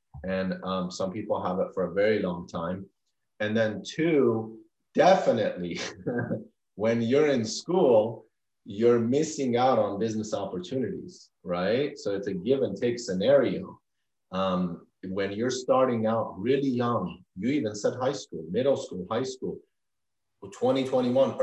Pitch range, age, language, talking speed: 95-125 Hz, 30-49, English, 140 wpm